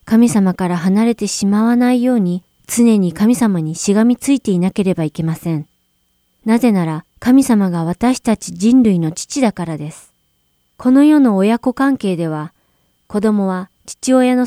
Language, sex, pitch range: Japanese, female, 175-235 Hz